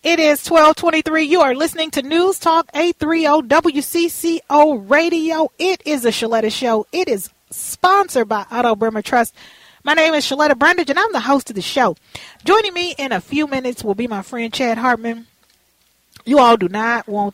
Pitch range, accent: 210-290 Hz, American